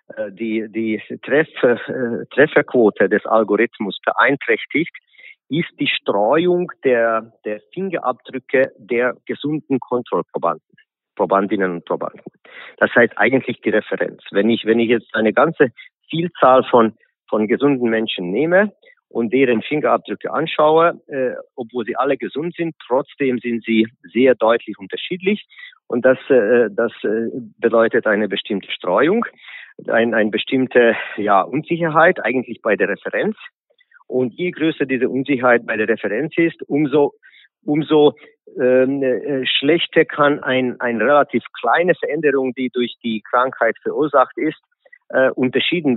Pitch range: 115-155 Hz